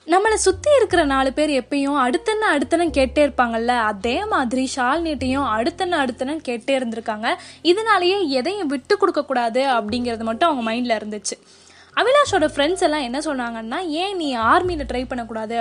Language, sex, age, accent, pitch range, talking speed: Tamil, female, 10-29, native, 235-335 Hz, 140 wpm